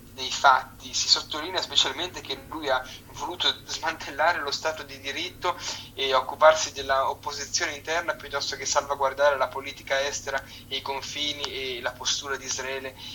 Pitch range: 125-140 Hz